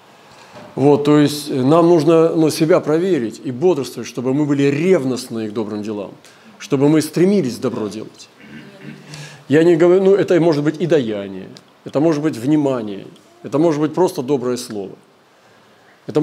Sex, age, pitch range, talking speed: male, 40-59, 130-165 Hz, 155 wpm